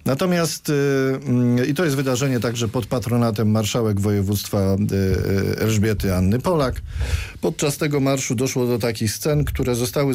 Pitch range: 100-120 Hz